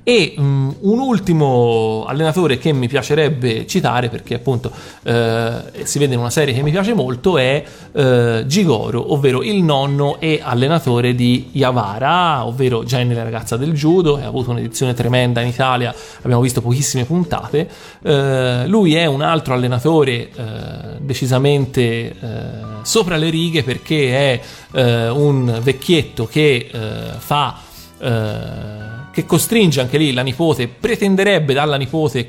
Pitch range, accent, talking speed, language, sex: 120-150 Hz, native, 140 wpm, Italian, male